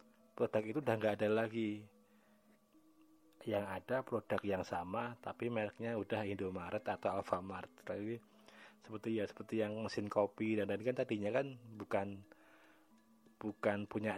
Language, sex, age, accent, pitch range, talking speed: Indonesian, male, 30-49, native, 95-110 Hz, 135 wpm